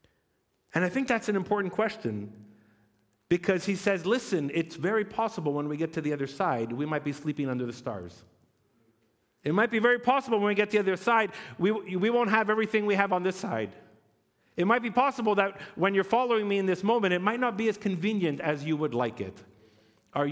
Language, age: English, 50-69